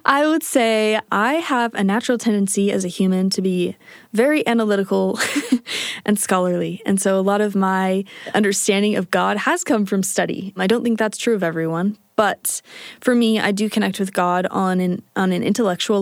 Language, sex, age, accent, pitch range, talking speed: English, female, 20-39, American, 190-230 Hz, 185 wpm